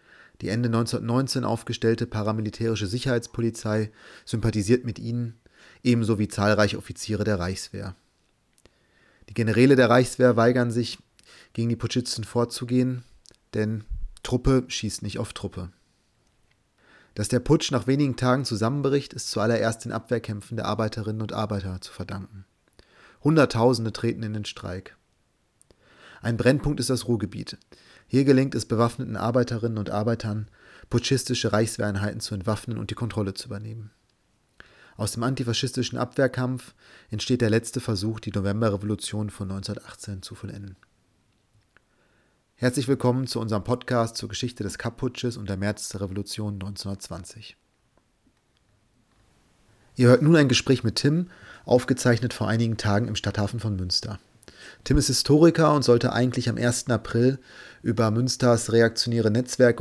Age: 30-49